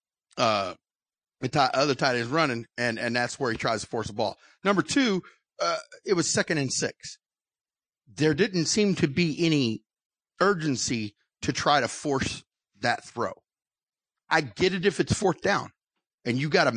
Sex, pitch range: male, 130-185 Hz